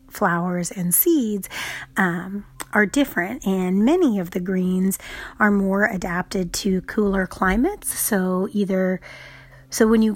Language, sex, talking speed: English, female, 130 wpm